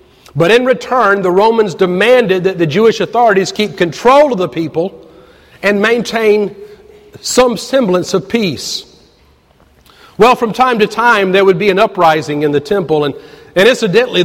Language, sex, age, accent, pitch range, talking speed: English, male, 50-69, American, 170-230 Hz, 155 wpm